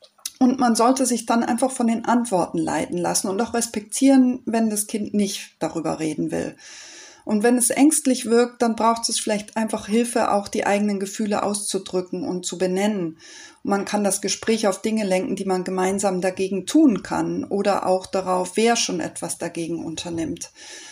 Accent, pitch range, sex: German, 195-235 Hz, female